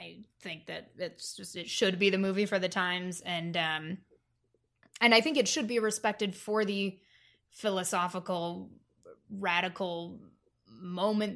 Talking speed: 145 wpm